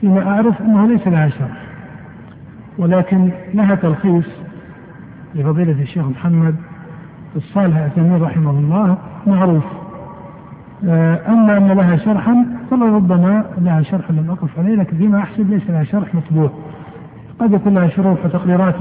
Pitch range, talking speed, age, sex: 160-190 Hz, 125 wpm, 60-79, male